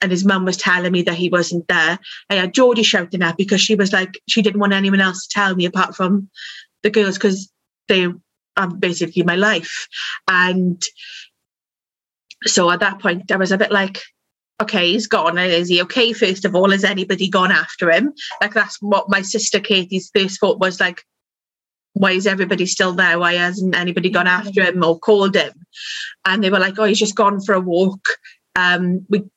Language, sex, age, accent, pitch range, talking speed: English, female, 30-49, British, 180-210 Hz, 200 wpm